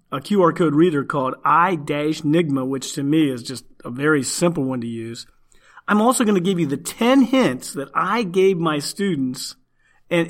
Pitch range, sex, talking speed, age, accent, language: 140-185 Hz, male, 185 wpm, 40-59, American, English